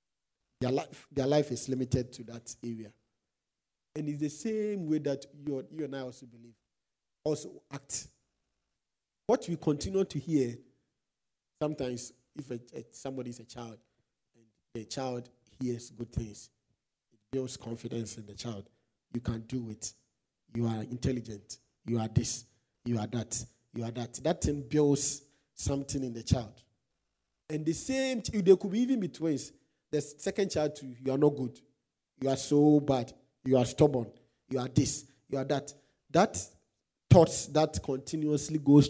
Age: 50-69